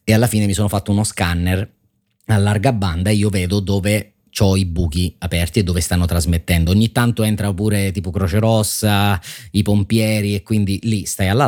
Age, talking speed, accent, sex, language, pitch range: 30-49, 190 wpm, native, male, Italian, 85-100 Hz